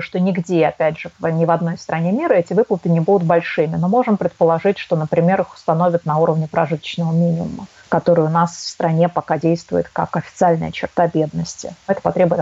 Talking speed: 185 wpm